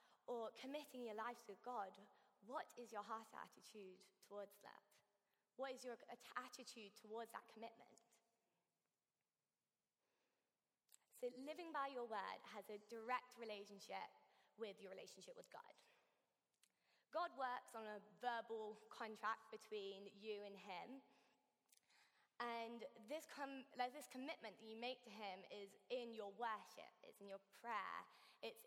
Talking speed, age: 135 wpm, 20-39